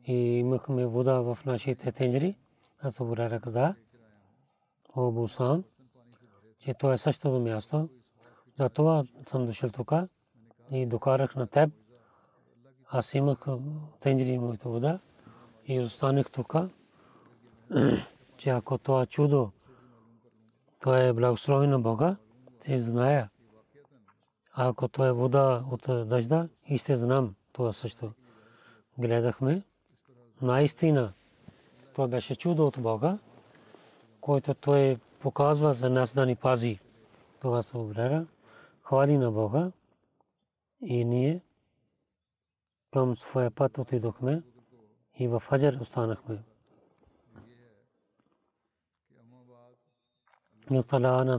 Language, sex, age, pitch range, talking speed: Bulgarian, male, 40-59, 120-135 Hz, 100 wpm